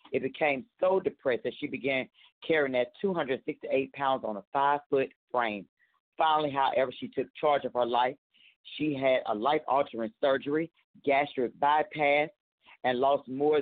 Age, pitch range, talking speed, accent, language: 40-59, 140-185 Hz, 145 wpm, American, English